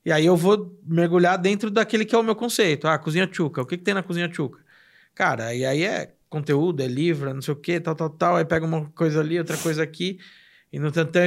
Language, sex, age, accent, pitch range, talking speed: Portuguese, male, 20-39, Brazilian, 140-175 Hz, 250 wpm